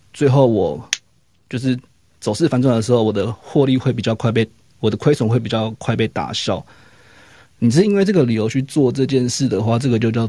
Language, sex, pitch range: Chinese, male, 110-130 Hz